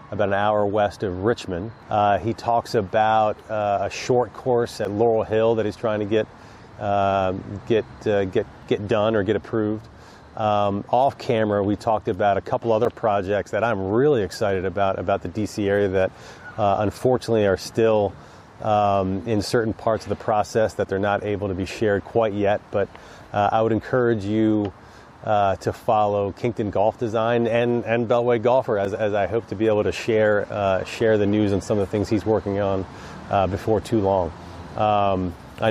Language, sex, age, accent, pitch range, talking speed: English, male, 30-49, American, 100-115 Hz, 190 wpm